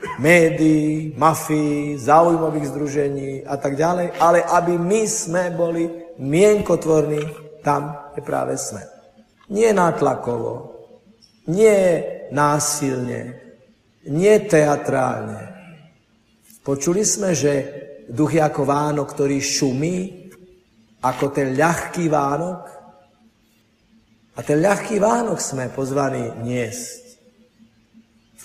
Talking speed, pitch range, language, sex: 95 wpm, 130-175 Hz, Slovak, male